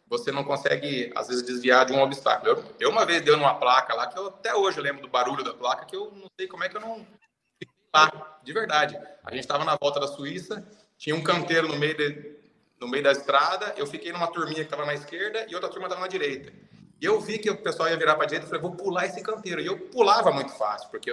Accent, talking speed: Brazilian, 260 wpm